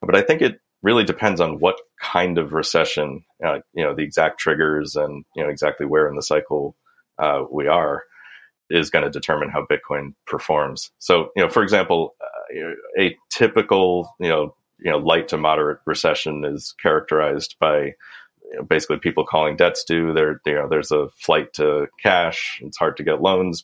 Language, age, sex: English, 30-49, male